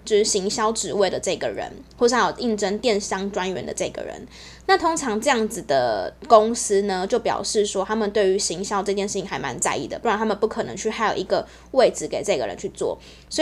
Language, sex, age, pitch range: Chinese, female, 10-29, 195-225 Hz